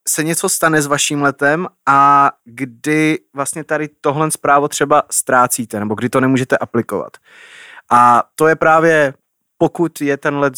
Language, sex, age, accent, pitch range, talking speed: Czech, male, 30-49, native, 110-130 Hz, 155 wpm